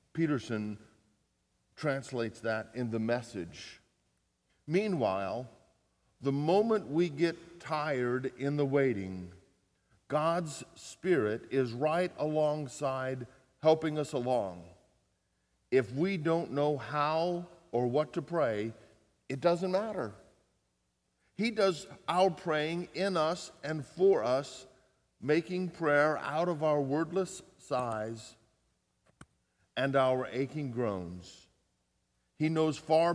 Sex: male